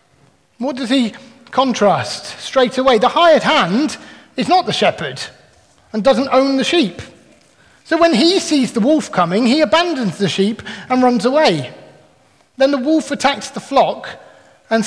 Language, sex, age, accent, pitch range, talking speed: English, male, 30-49, British, 205-300 Hz, 155 wpm